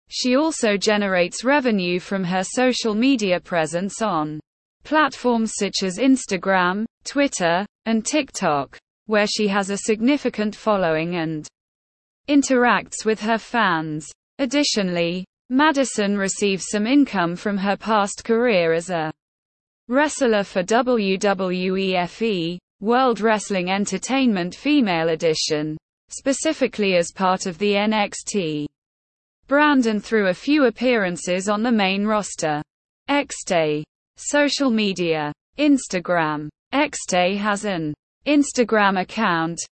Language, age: English, 20-39